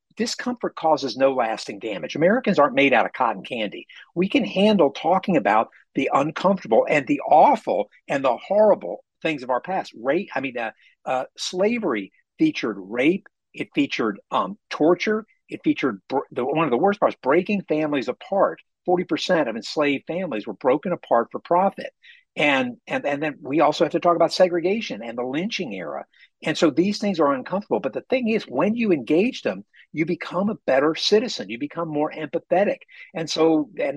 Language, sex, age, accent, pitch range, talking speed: English, male, 60-79, American, 160-230 Hz, 180 wpm